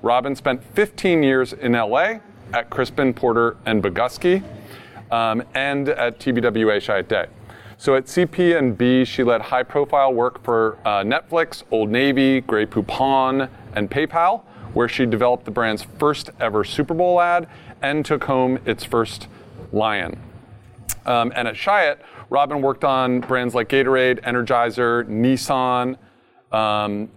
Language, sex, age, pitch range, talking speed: English, male, 30-49, 110-135 Hz, 135 wpm